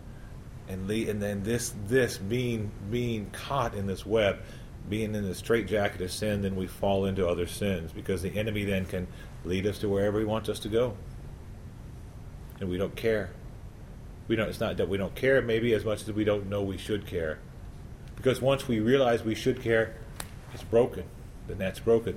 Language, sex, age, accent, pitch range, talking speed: English, male, 40-59, American, 100-115 Hz, 195 wpm